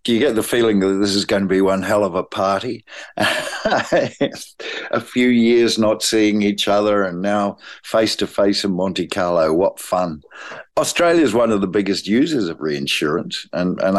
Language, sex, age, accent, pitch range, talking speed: English, male, 50-69, Australian, 90-105 Hz, 175 wpm